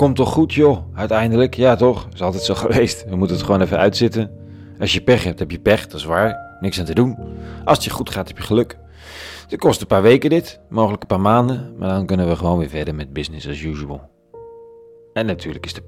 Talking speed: 240 wpm